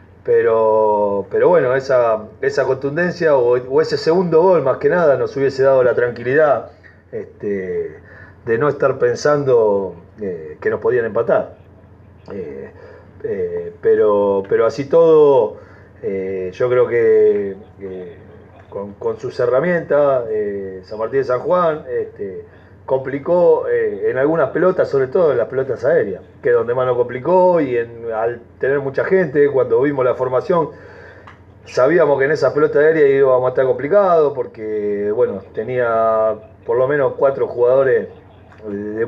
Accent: Argentinian